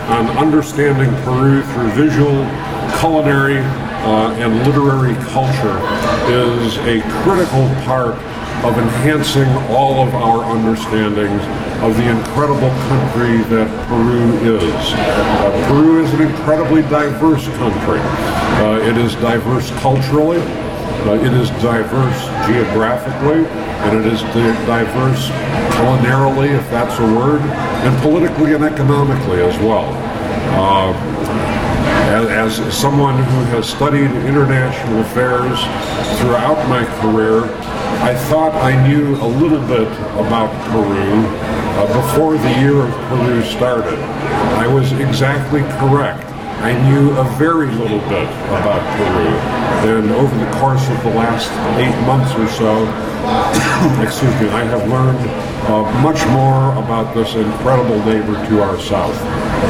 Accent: American